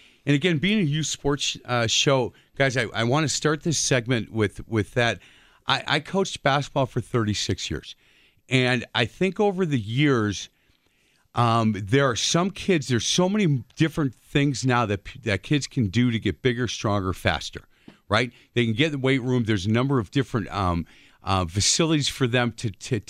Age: 40-59